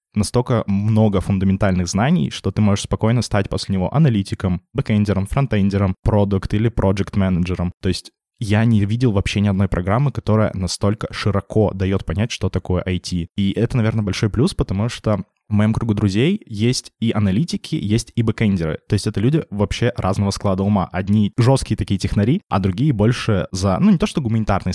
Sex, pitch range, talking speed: male, 100-120 Hz, 175 wpm